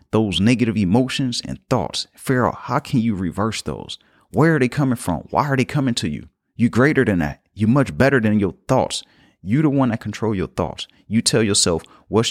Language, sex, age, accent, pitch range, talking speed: English, male, 30-49, American, 95-125 Hz, 210 wpm